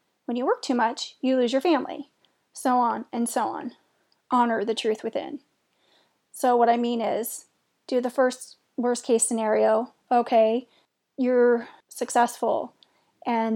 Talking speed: 145 wpm